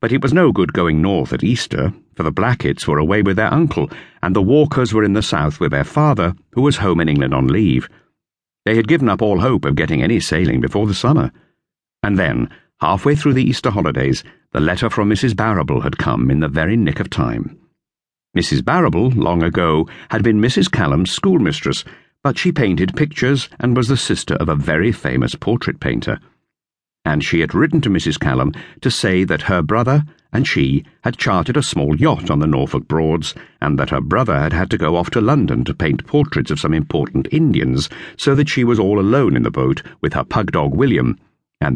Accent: British